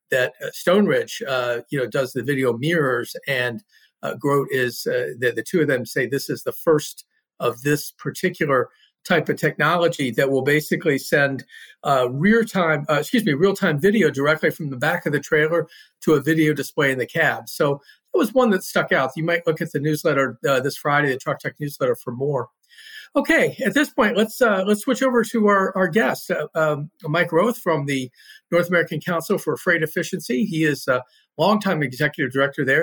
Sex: male